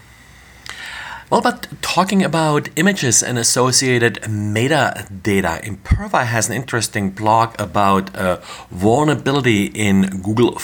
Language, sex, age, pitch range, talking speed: English, male, 40-59, 100-125 Hz, 105 wpm